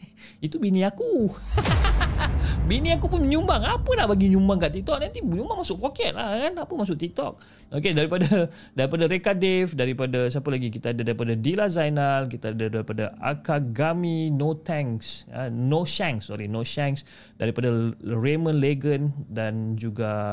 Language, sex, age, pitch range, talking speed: Malay, male, 30-49, 110-160 Hz, 145 wpm